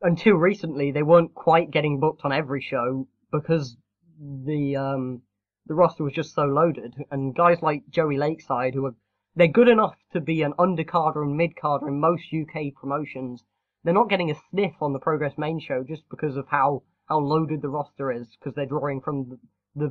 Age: 10-29